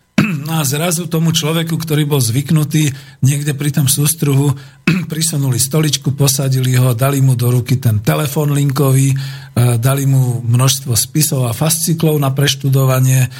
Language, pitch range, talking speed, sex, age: Slovak, 125-150 Hz, 135 wpm, male, 50-69